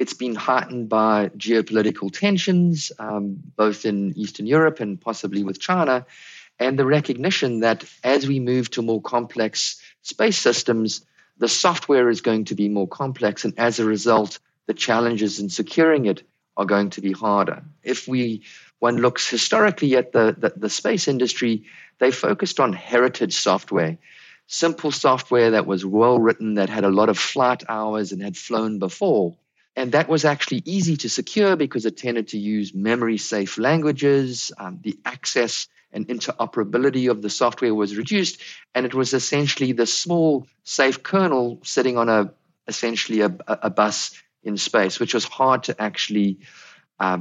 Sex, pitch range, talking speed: male, 105-140 Hz, 165 wpm